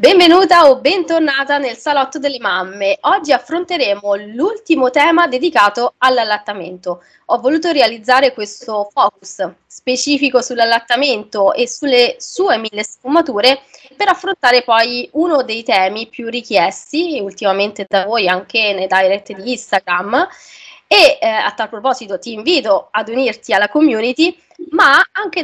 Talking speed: 125 wpm